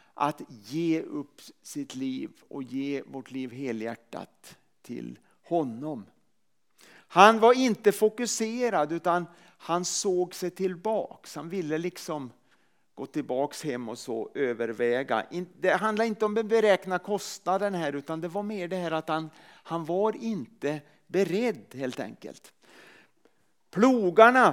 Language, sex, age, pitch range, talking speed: Swedish, male, 40-59, 150-200 Hz, 130 wpm